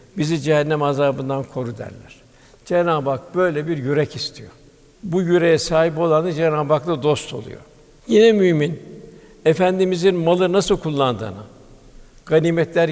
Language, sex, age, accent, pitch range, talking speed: Turkish, male, 60-79, native, 150-175 Hz, 120 wpm